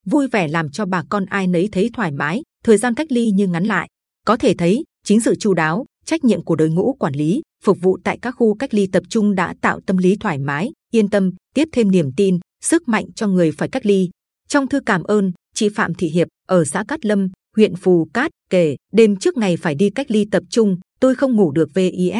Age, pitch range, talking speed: 20-39, 180-230 Hz, 245 wpm